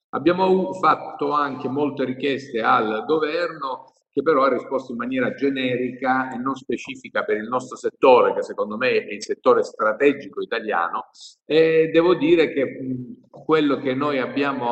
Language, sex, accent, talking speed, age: Italian, male, native, 150 wpm, 50-69